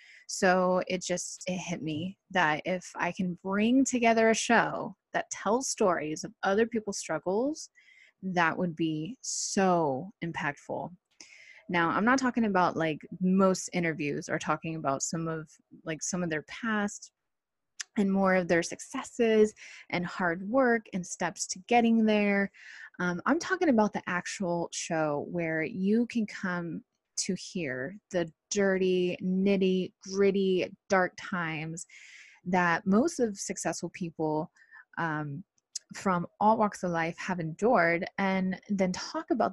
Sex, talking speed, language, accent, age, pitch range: female, 140 wpm, English, American, 20-39, 175-225 Hz